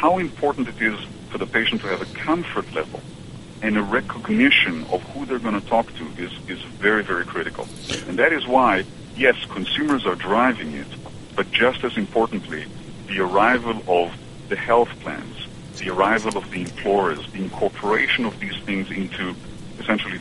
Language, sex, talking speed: English, male, 170 wpm